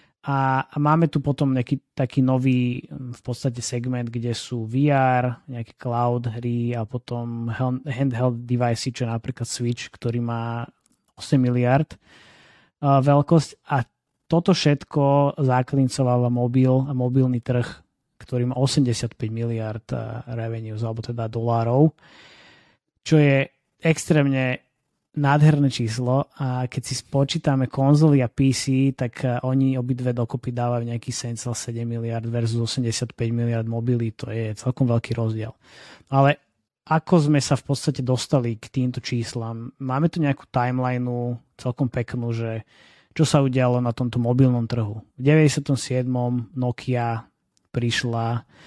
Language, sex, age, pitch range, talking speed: Slovak, male, 20-39, 120-135 Hz, 125 wpm